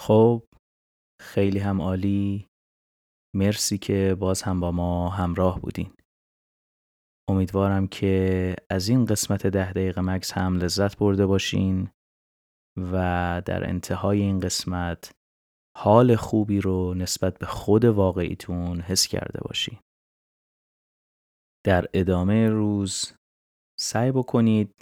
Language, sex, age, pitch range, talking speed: Persian, male, 30-49, 90-100 Hz, 105 wpm